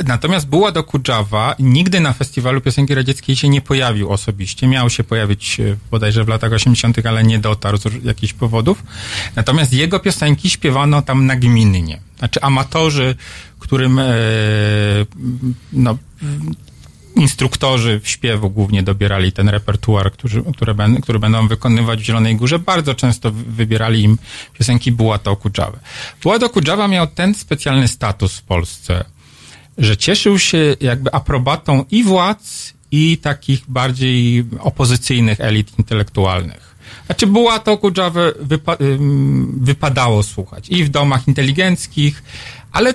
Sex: male